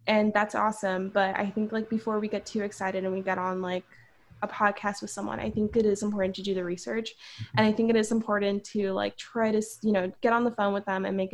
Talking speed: 265 wpm